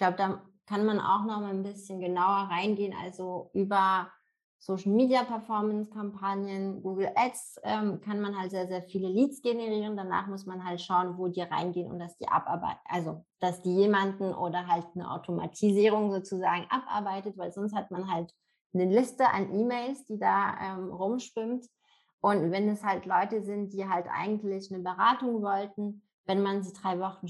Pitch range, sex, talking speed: 180-210 Hz, female, 170 wpm